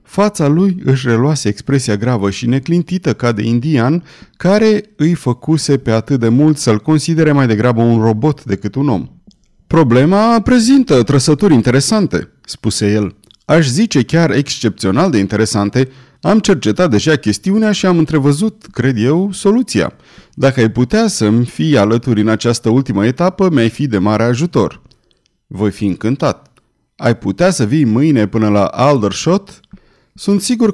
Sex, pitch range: male, 115-170 Hz